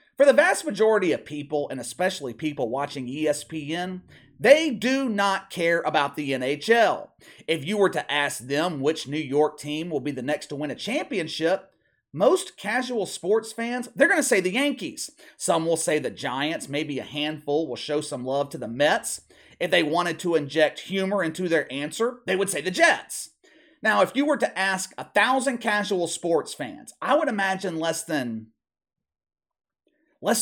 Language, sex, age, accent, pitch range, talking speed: English, male, 30-49, American, 150-250 Hz, 180 wpm